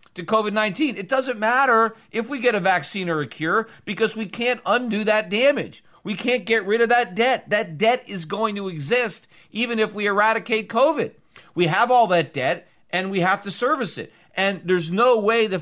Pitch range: 175-230 Hz